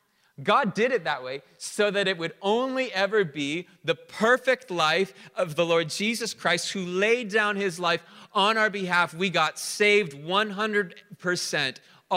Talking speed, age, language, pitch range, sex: 160 wpm, 30-49, English, 150-195 Hz, male